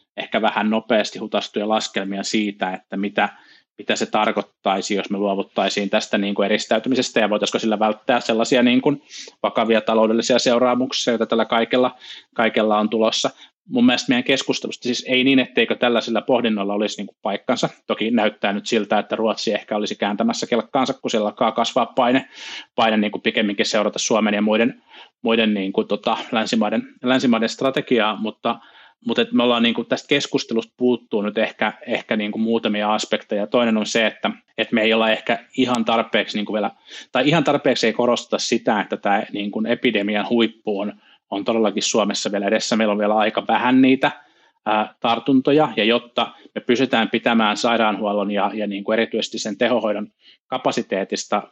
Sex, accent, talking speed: male, native, 165 wpm